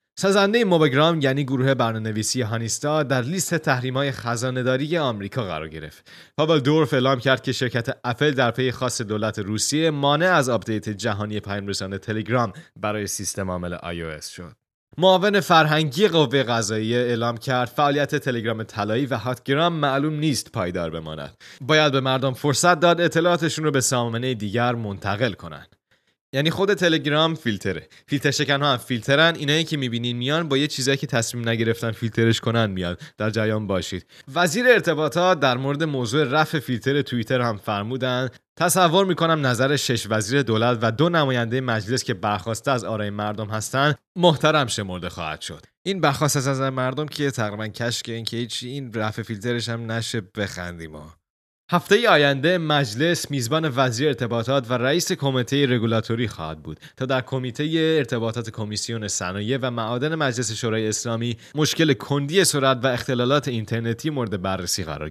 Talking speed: 155 wpm